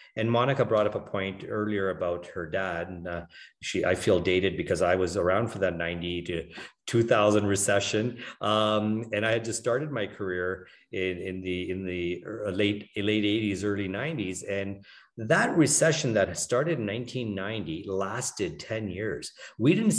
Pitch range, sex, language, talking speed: 95-120 Hz, male, English, 170 wpm